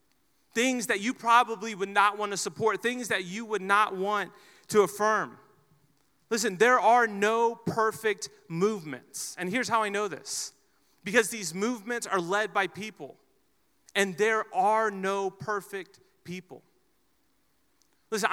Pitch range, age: 190-225 Hz, 30-49